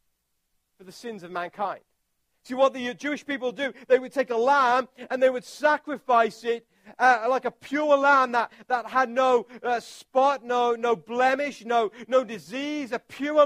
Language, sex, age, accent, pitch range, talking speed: English, male, 40-59, British, 205-265 Hz, 180 wpm